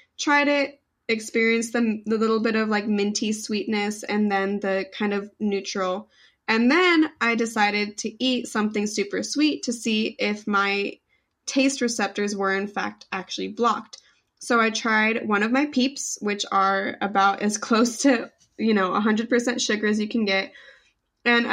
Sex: female